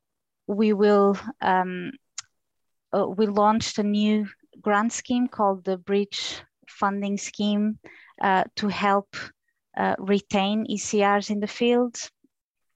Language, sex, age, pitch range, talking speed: English, female, 20-39, 185-215 Hz, 115 wpm